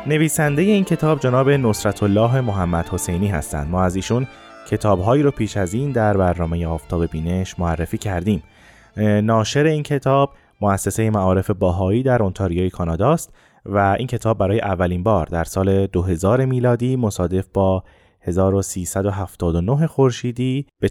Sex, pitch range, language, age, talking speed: male, 95-125 Hz, Persian, 20-39, 135 wpm